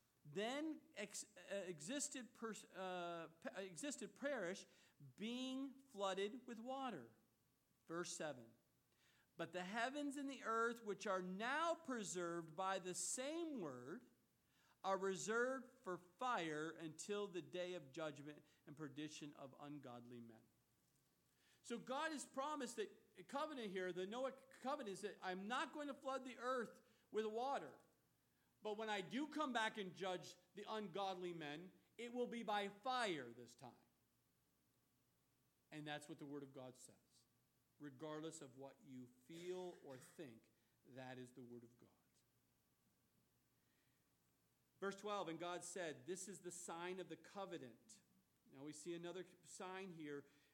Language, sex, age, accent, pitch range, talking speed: English, male, 50-69, American, 160-235 Hz, 140 wpm